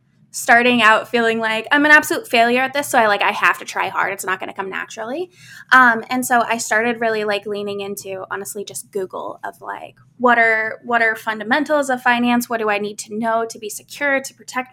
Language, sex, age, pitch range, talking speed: English, female, 20-39, 200-240 Hz, 230 wpm